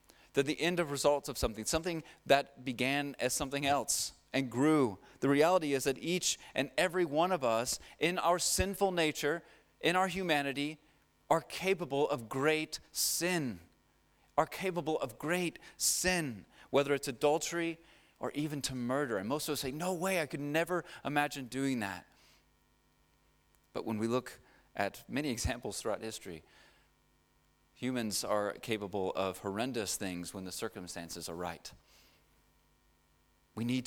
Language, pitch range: English, 105-150 Hz